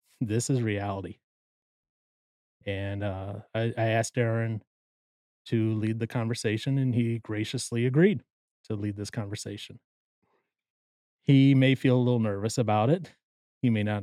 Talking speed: 135 wpm